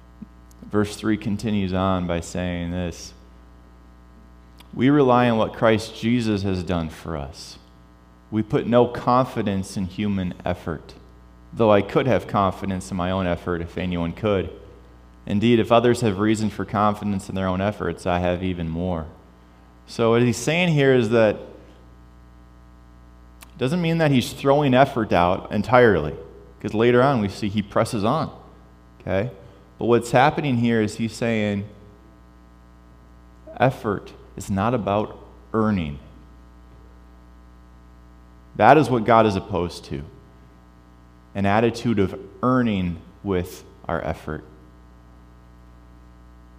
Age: 30-49